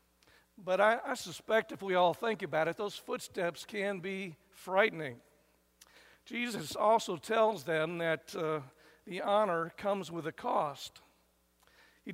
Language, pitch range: English, 160-200 Hz